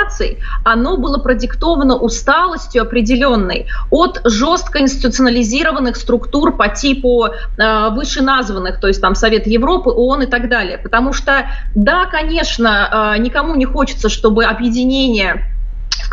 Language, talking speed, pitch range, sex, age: Russian, 125 wpm, 230-275 Hz, female, 30-49